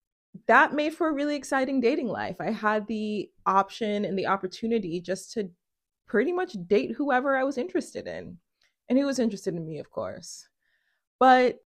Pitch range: 190-245 Hz